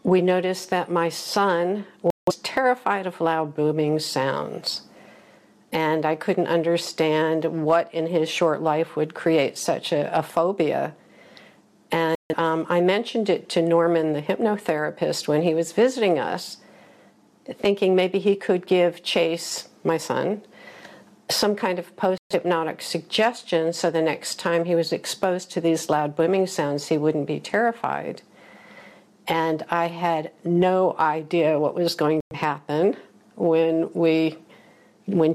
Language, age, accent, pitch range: Chinese, 50-69, American, 160-185 Hz